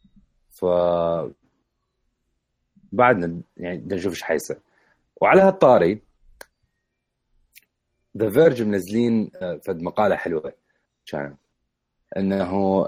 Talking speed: 75 wpm